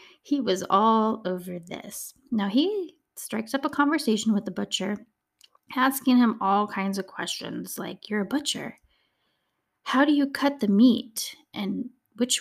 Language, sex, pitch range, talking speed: English, female, 195-260 Hz, 155 wpm